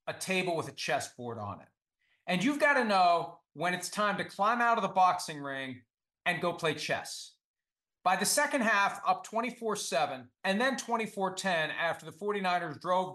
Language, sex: English, male